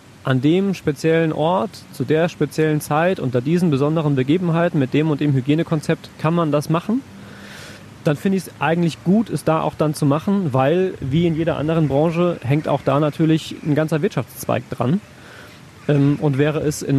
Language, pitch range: German, 135-160 Hz